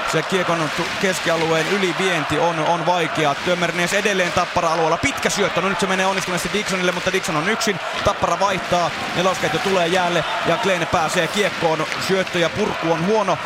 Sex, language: male, Finnish